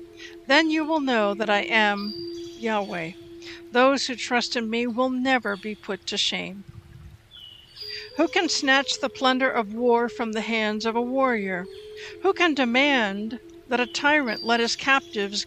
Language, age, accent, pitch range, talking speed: English, 60-79, American, 225-310 Hz, 160 wpm